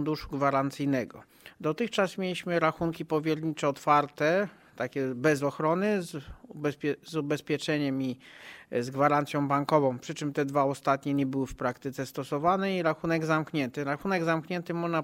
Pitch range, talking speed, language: 135-155 Hz, 135 wpm, Polish